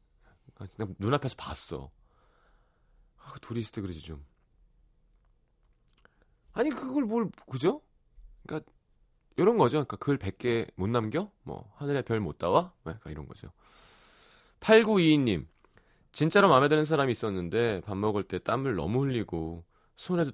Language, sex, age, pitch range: Korean, male, 30-49, 85-130 Hz